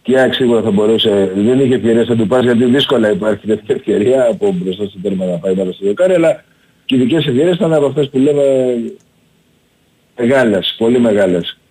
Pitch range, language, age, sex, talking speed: 105-145 Hz, Greek, 50-69, male, 180 wpm